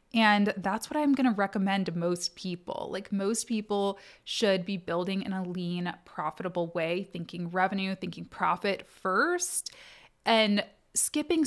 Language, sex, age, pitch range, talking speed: English, female, 20-39, 185-250 Hz, 145 wpm